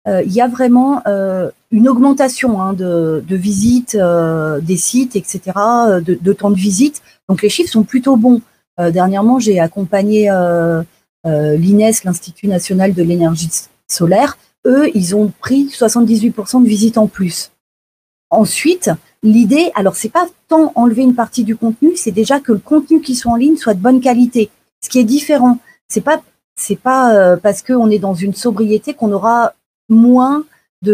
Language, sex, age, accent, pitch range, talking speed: French, female, 40-59, French, 195-250 Hz, 180 wpm